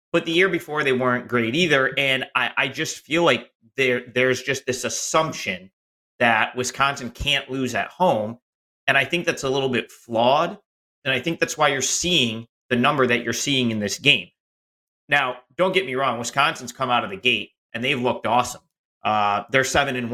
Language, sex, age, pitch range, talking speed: English, male, 30-49, 120-140 Hz, 195 wpm